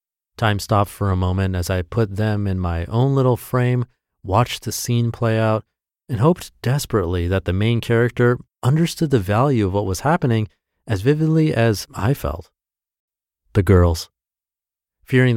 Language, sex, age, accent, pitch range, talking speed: English, male, 30-49, American, 85-120 Hz, 160 wpm